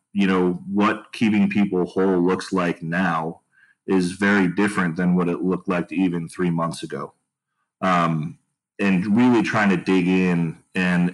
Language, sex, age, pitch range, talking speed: English, male, 30-49, 85-95 Hz, 155 wpm